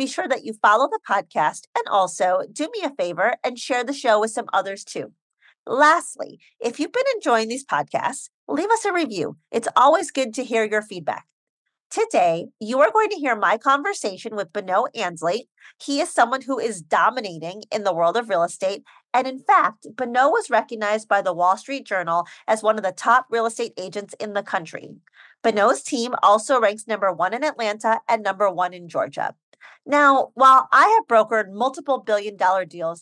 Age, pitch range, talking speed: 40-59, 195-265 Hz, 190 wpm